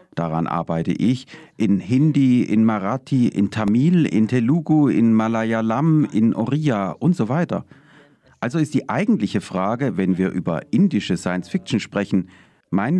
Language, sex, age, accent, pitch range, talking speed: German, male, 40-59, German, 95-145 Hz, 140 wpm